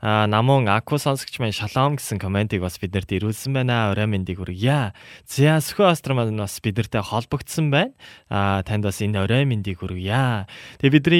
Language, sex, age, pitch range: Korean, male, 20-39, 100-130 Hz